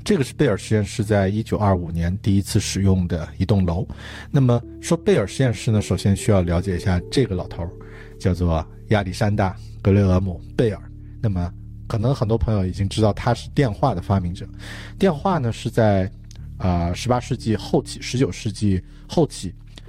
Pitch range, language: 90-110 Hz, Chinese